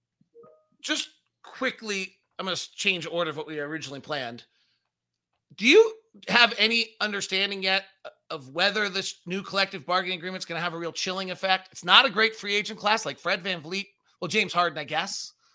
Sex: male